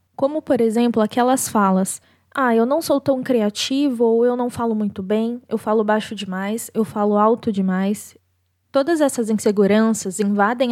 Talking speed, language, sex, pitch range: 160 wpm, Portuguese, female, 210-255 Hz